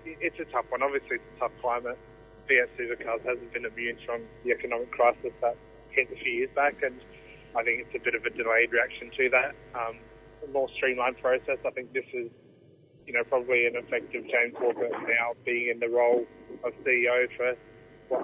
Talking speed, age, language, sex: 200 wpm, 30-49, English, male